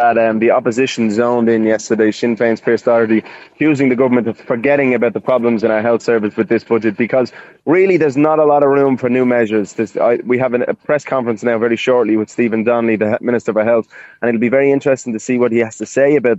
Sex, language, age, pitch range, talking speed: male, English, 20-39, 115-130 Hz, 245 wpm